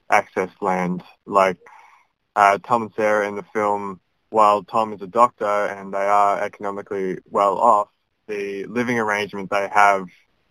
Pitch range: 95-105 Hz